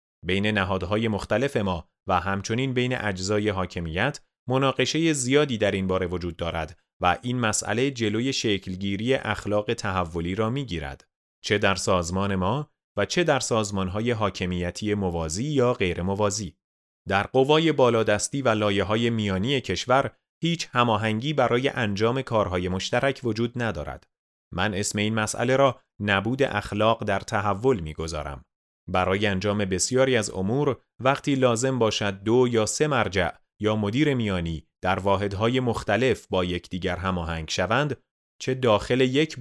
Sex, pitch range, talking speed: male, 95-125 Hz, 135 wpm